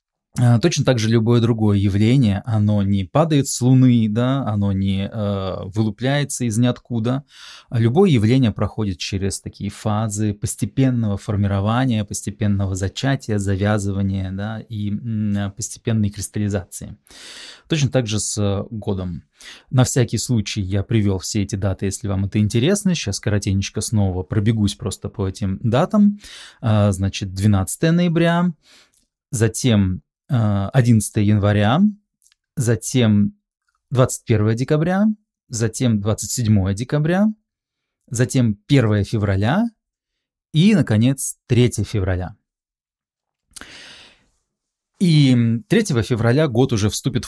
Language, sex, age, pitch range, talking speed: Russian, male, 20-39, 100-130 Hz, 110 wpm